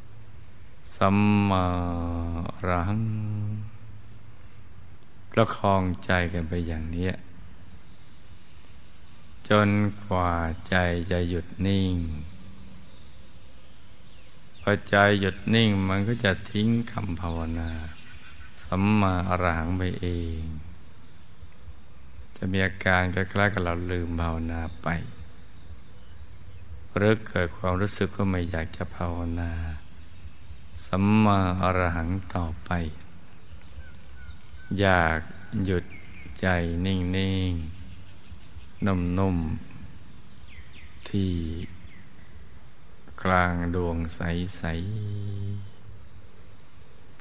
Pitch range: 85-95 Hz